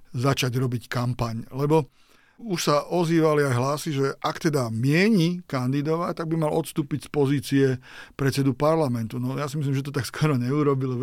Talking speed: 175 wpm